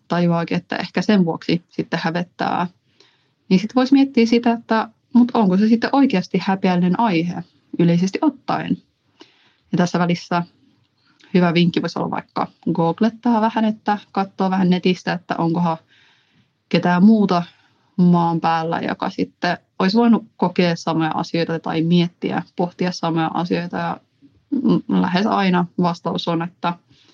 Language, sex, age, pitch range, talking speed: Finnish, female, 30-49, 170-205 Hz, 135 wpm